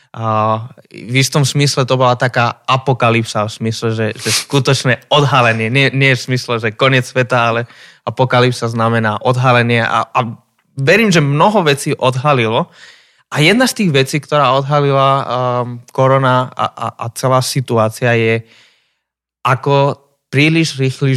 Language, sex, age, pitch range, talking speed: Slovak, male, 20-39, 115-135 Hz, 140 wpm